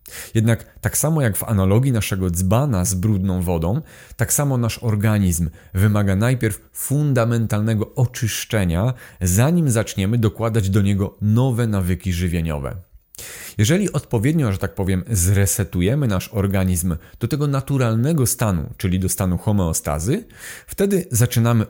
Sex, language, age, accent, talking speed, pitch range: male, Polish, 30-49, native, 125 wpm, 95-115 Hz